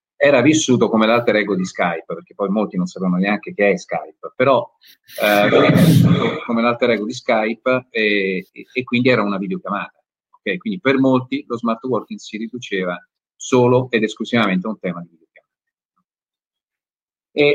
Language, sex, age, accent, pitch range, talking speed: Italian, male, 40-59, native, 100-130 Hz, 170 wpm